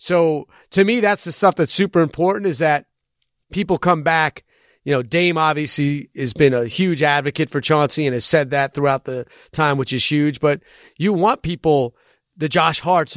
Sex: male